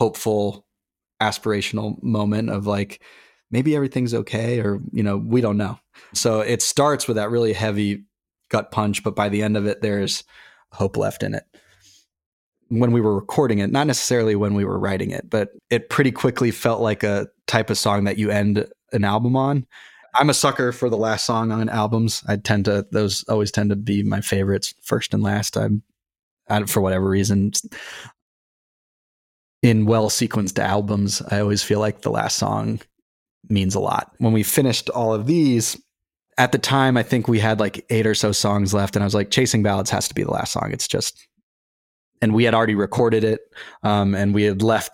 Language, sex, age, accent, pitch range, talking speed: English, male, 20-39, American, 100-115 Hz, 195 wpm